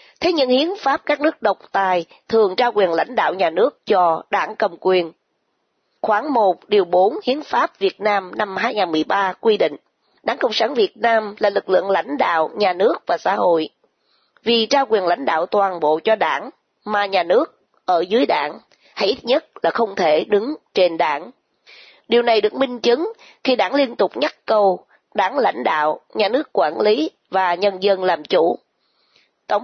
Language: Vietnamese